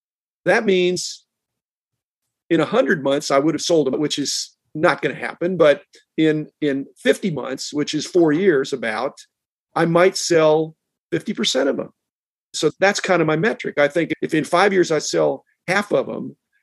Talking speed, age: 175 wpm, 50-69